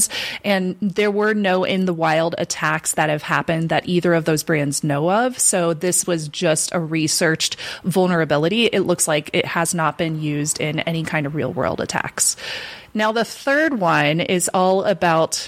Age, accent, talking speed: 20-39, American, 170 wpm